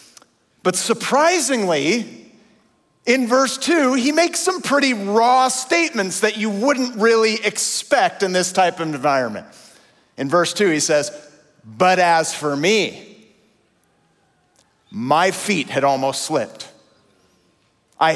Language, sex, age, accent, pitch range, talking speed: English, male, 40-59, American, 160-265 Hz, 120 wpm